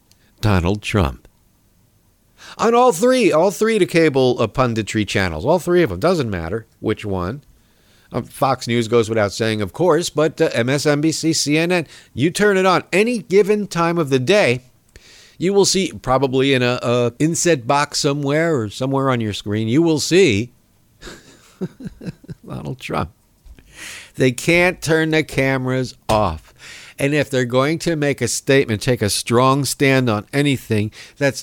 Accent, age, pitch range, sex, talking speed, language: American, 50-69, 105-145 Hz, male, 160 wpm, English